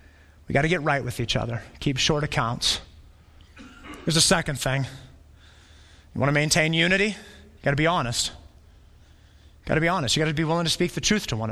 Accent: American